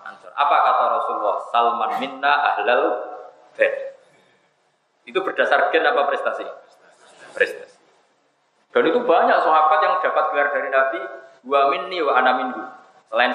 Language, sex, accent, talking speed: Indonesian, male, native, 115 wpm